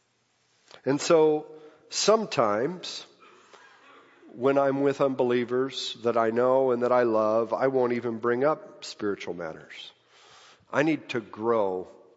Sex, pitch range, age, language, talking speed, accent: male, 115-140 Hz, 50-69, English, 125 wpm, American